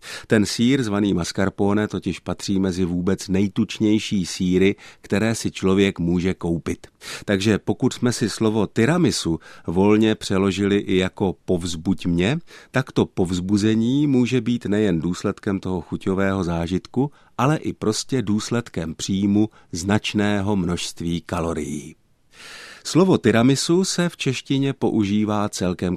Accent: native